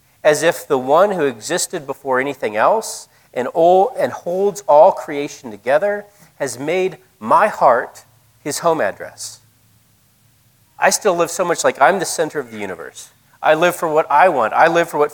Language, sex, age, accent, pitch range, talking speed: English, male, 40-59, American, 125-160 Hz, 175 wpm